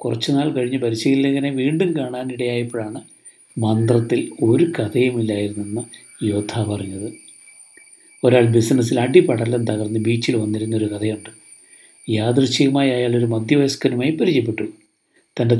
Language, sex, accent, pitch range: Malayalam, male, native, 110-145 Hz